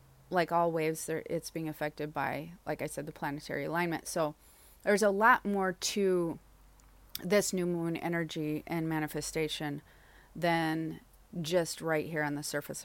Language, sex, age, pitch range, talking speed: English, female, 30-49, 150-175 Hz, 155 wpm